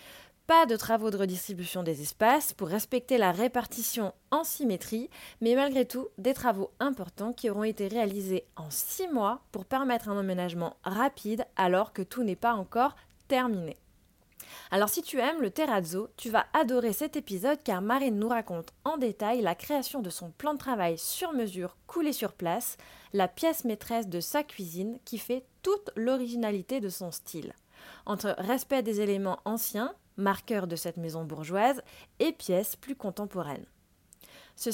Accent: French